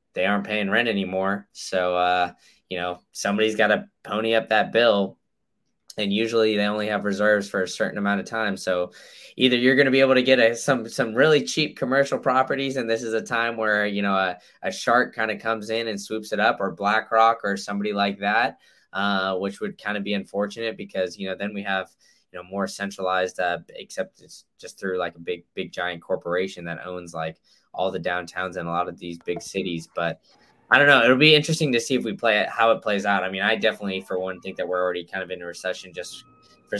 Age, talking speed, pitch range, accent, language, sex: 10-29, 235 wpm, 95-110 Hz, American, English, male